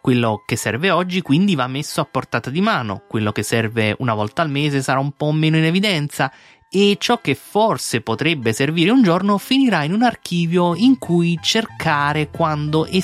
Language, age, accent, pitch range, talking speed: Italian, 20-39, native, 115-170 Hz, 190 wpm